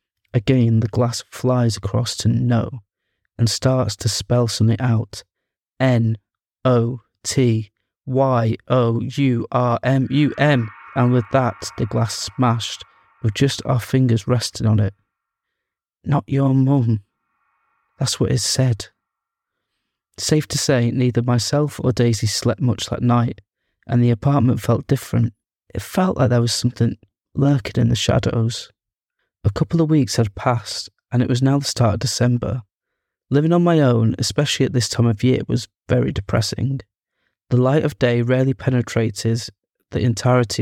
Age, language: 20-39, English